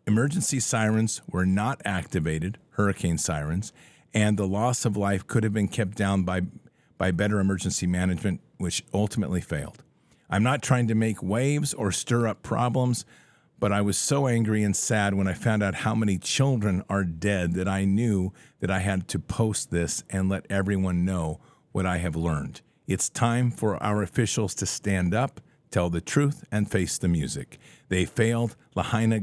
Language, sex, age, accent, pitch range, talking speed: English, male, 50-69, American, 95-115 Hz, 175 wpm